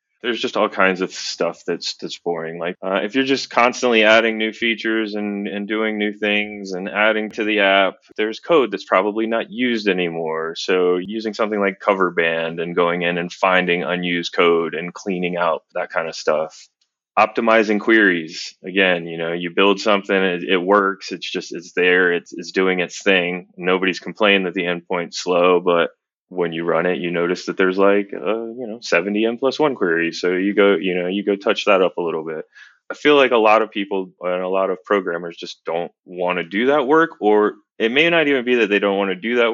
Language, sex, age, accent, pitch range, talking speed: English, male, 20-39, American, 90-110 Hz, 215 wpm